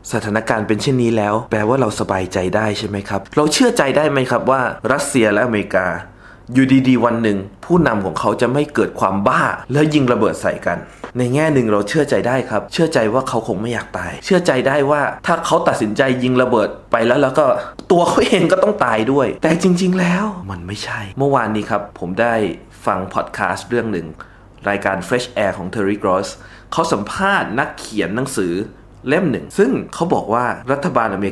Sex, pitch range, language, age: male, 105-145 Hz, Thai, 20-39